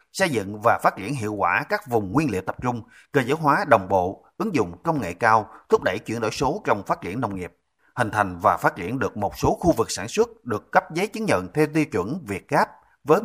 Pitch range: 110-155 Hz